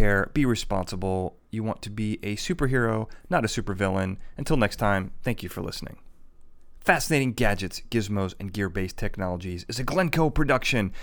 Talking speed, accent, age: 160 wpm, American, 30-49